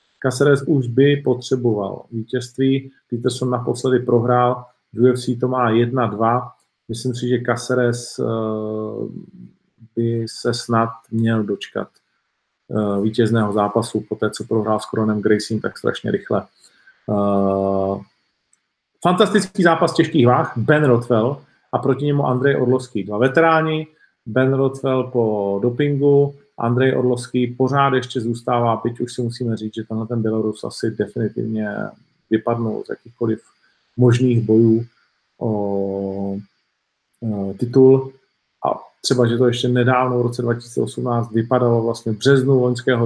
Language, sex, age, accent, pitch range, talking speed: Czech, male, 40-59, native, 110-125 Hz, 130 wpm